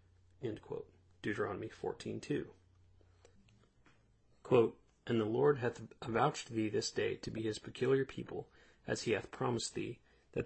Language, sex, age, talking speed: English, male, 30-49, 125 wpm